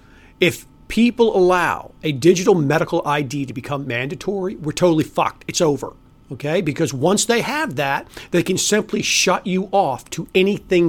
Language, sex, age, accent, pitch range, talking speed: English, male, 40-59, American, 160-210 Hz, 160 wpm